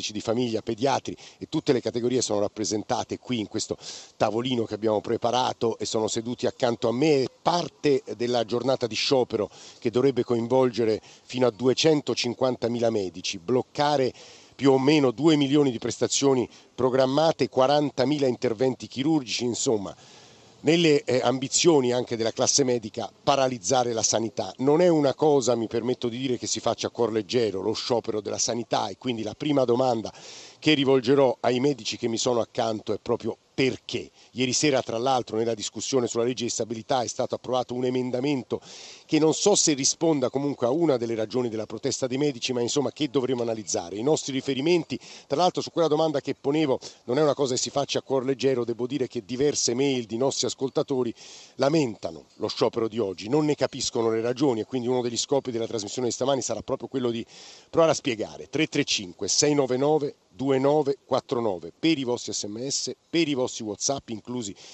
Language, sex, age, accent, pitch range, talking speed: Italian, male, 50-69, native, 115-140 Hz, 170 wpm